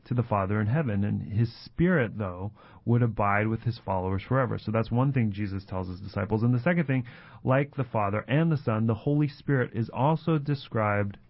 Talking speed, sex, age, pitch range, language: 205 wpm, male, 30-49, 110-130 Hz, English